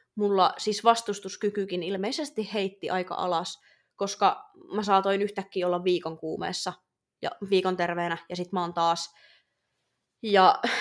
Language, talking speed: Finnish, 130 wpm